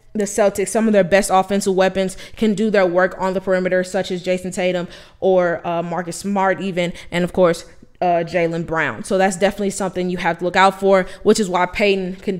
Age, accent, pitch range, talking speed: 20-39, American, 185-220 Hz, 220 wpm